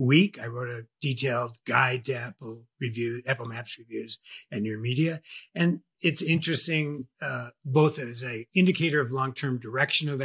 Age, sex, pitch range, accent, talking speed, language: 50-69, male, 120-140 Hz, American, 160 wpm, English